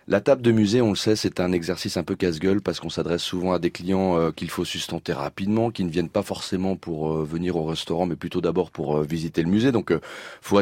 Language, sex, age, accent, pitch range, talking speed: French, male, 30-49, French, 90-110 Hz, 240 wpm